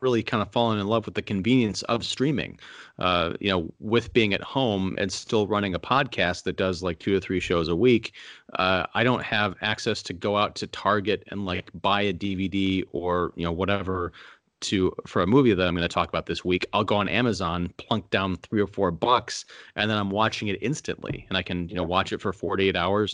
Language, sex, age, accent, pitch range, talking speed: English, male, 30-49, American, 90-110 Hz, 230 wpm